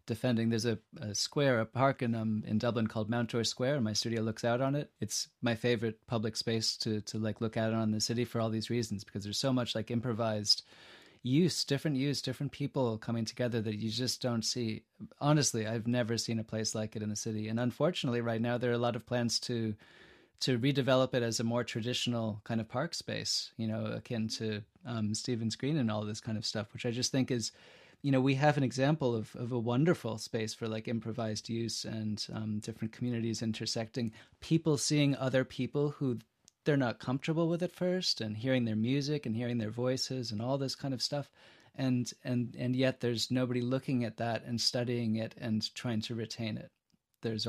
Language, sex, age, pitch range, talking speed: English, male, 30-49, 110-130 Hz, 215 wpm